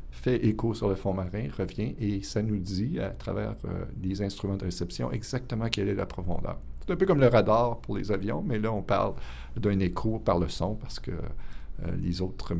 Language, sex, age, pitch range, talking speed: English, male, 50-69, 85-110 Hz, 220 wpm